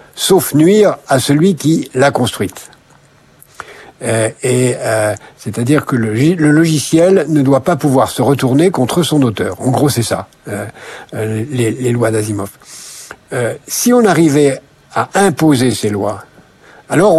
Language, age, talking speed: French, 60-79, 145 wpm